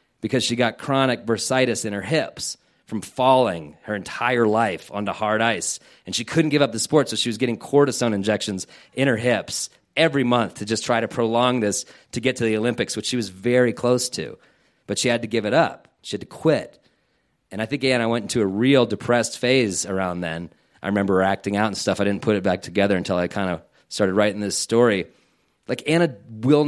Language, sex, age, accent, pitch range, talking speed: English, male, 30-49, American, 105-130 Hz, 220 wpm